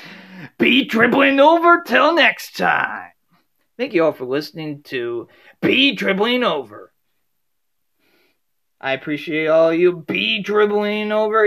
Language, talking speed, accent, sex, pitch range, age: English, 115 wpm, American, male, 160-240 Hz, 40-59